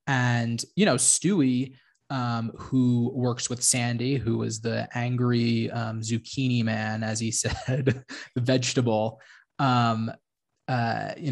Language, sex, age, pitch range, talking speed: English, male, 20-39, 115-130 Hz, 125 wpm